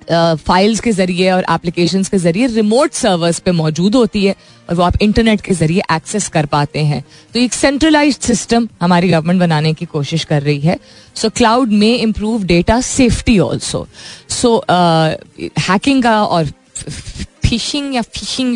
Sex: female